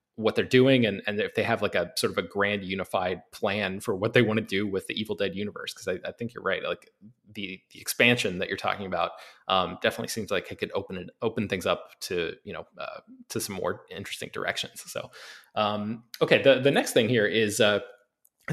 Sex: male